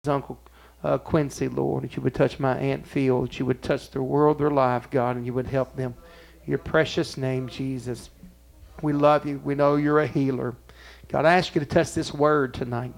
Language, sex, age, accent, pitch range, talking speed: English, male, 50-69, American, 85-135 Hz, 215 wpm